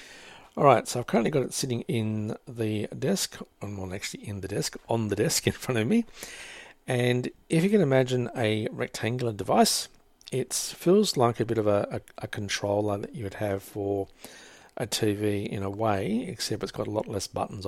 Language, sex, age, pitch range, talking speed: English, male, 60-79, 100-120 Hz, 190 wpm